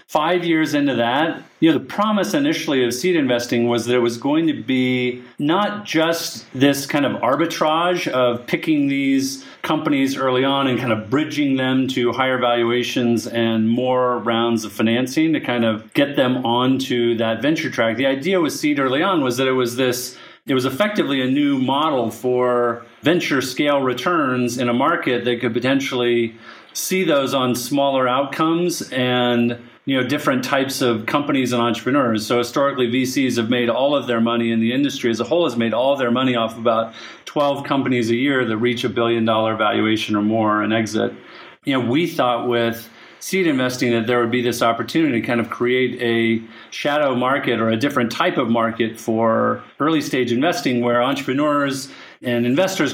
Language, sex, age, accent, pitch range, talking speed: English, male, 40-59, American, 115-140 Hz, 185 wpm